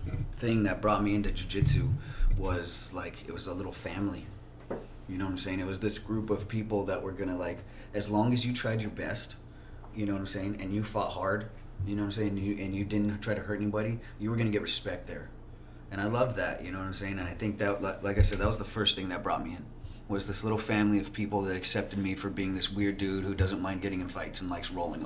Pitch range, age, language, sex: 95-105 Hz, 30-49, English, male